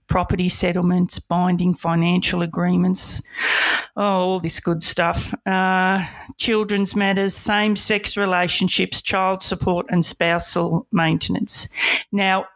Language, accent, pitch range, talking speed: English, Australian, 170-195 Hz, 95 wpm